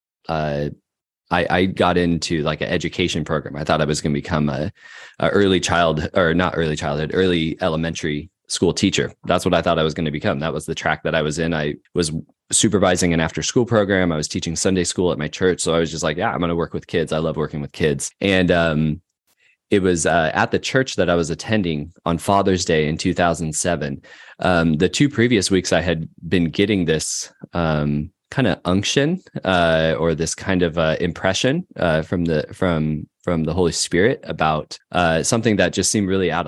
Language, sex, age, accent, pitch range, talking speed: English, male, 20-39, American, 80-95 Hz, 215 wpm